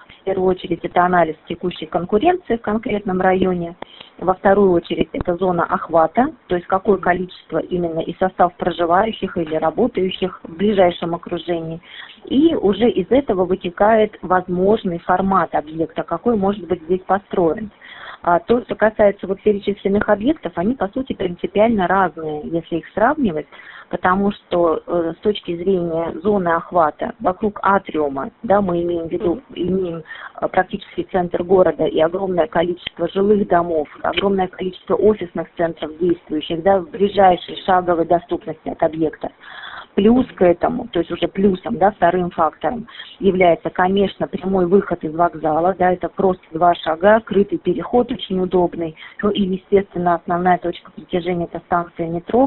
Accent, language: native, Russian